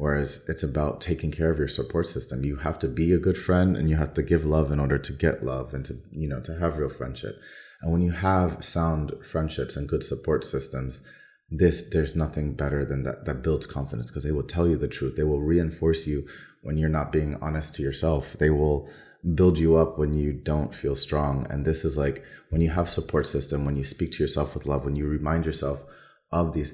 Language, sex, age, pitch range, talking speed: Polish, male, 30-49, 70-80 Hz, 235 wpm